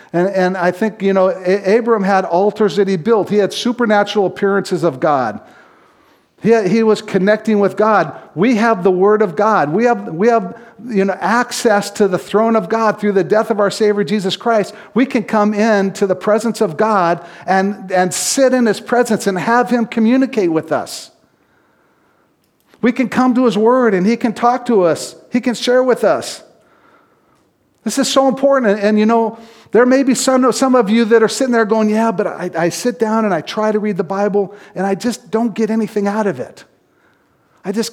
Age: 50-69